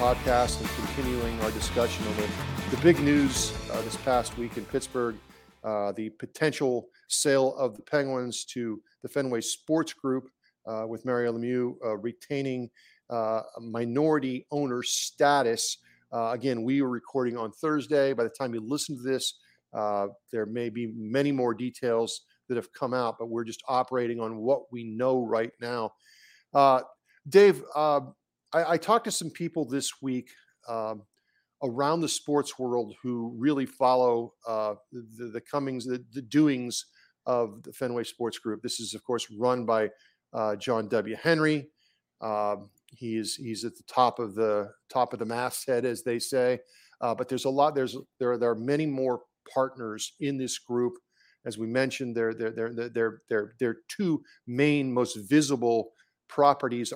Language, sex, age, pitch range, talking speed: English, male, 40-59, 115-135 Hz, 165 wpm